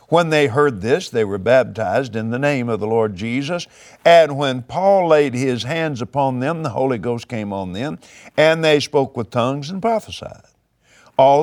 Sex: male